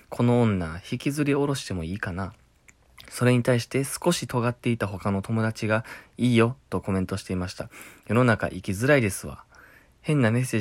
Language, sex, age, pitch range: Japanese, male, 20-39, 95-145 Hz